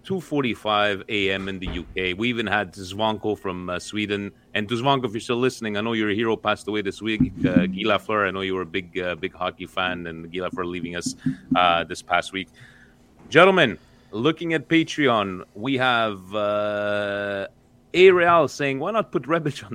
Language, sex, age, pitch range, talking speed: Italian, male, 30-49, 85-110 Hz, 195 wpm